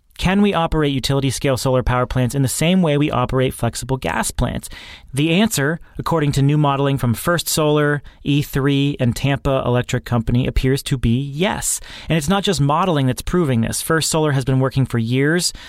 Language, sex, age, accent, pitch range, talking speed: English, male, 30-49, American, 120-145 Hz, 185 wpm